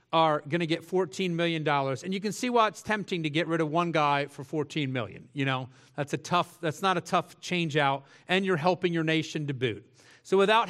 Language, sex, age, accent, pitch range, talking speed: English, male, 40-59, American, 160-195 Hz, 235 wpm